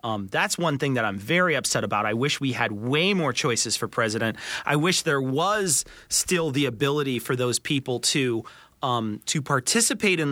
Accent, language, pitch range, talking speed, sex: American, English, 125-175 Hz, 190 wpm, male